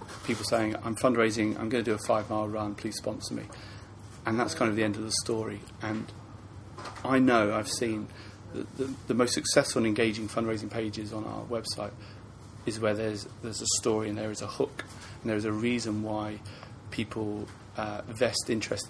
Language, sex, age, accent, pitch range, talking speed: English, male, 30-49, British, 105-115 Hz, 195 wpm